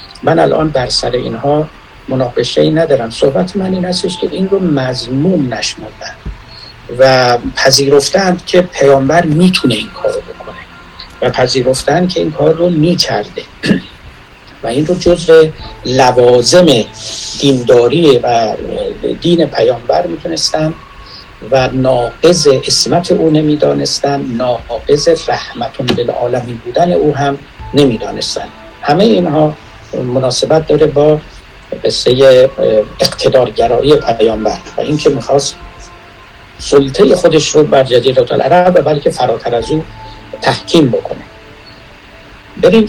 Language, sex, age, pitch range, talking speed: Persian, male, 60-79, 125-175 Hz, 110 wpm